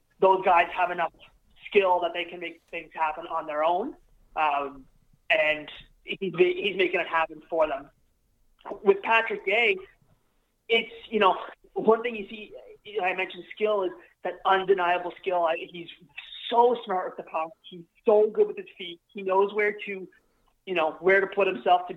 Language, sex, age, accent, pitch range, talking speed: English, male, 30-49, American, 165-210 Hz, 170 wpm